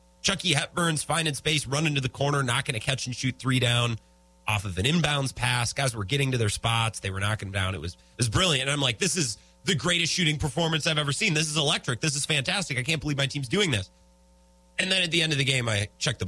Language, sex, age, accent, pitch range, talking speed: English, male, 30-49, American, 95-155 Hz, 245 wpm